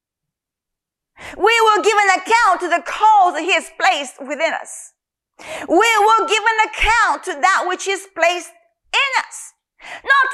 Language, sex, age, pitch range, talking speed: English, female, 40-59, 315-415 Hz, 155 wpm